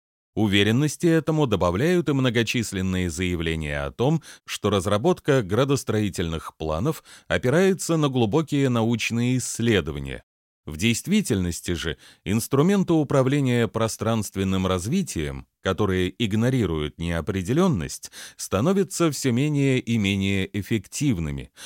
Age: 30-49